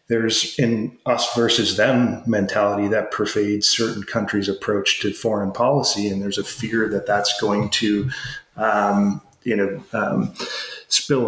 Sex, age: male, 30-49